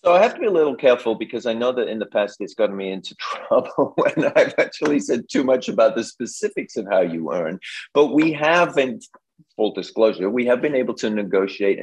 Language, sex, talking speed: English, male, 230 wpm